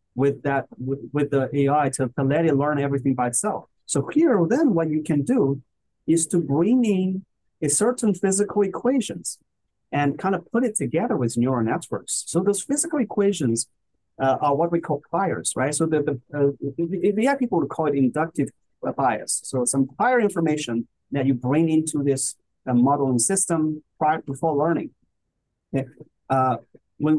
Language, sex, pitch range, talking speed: English, male, 130-170 Hz, 170 wpm